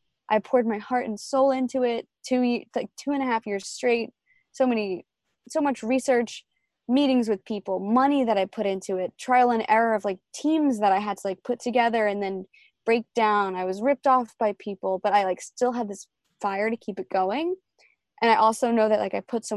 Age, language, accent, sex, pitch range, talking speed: 20-39, English, American, female, 200-250 Hz, 225 wpm